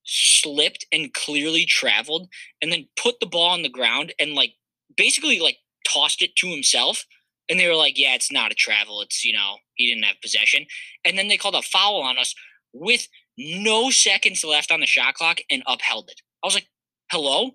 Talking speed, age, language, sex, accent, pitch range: 200 wpm, 20-39, English, male, American, 150-205 Hz